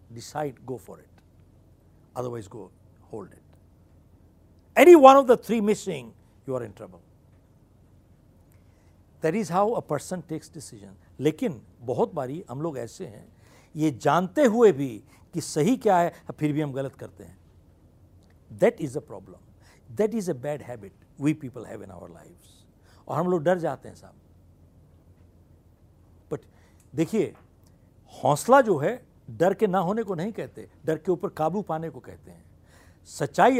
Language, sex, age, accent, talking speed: Hindi, male, 60-79, native, 160 wpm